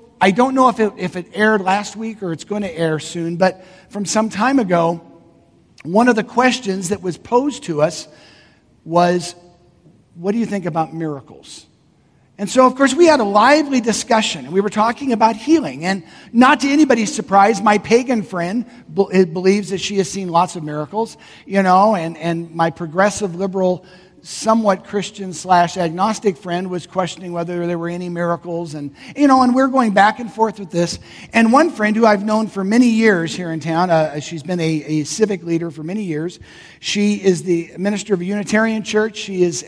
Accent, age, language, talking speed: American, 50-69, English, 195 wpm